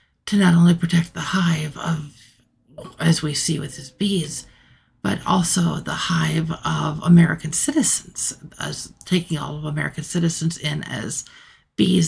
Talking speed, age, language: 145 wpm, 50-69, English